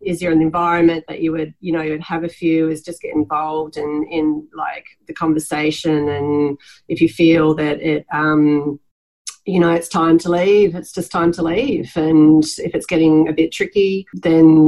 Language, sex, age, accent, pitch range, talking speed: English, female, 30-49, Australian, 150-165 Hz, 200 wpm